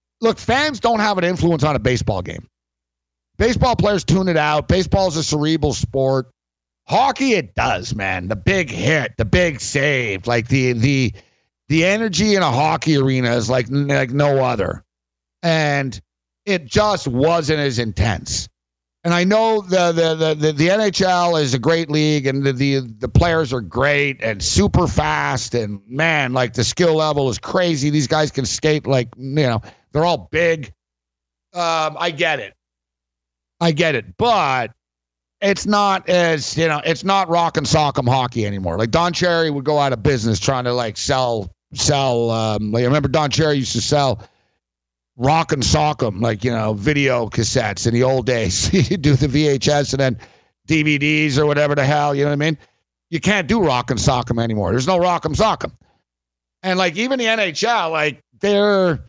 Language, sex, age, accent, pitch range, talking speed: English, male, 50-69, American, 115-165 Hz, 190 wpm